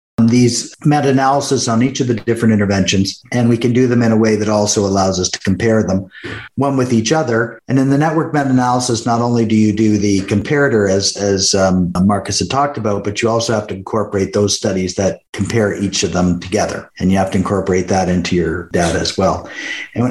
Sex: male